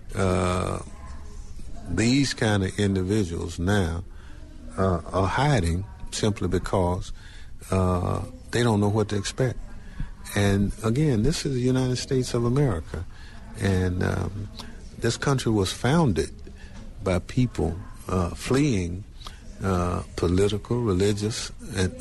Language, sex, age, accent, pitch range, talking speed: English, male, 50-69, American, 85-105 Hz, 110 wpm